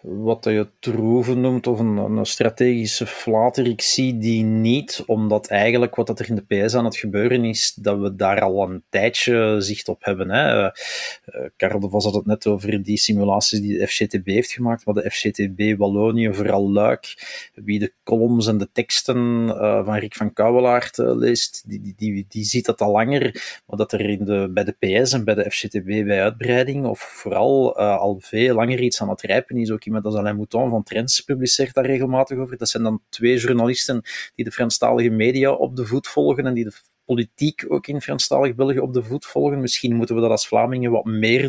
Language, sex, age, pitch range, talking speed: Dutch, male, 30-49, 105-125 Hz, 205 wpm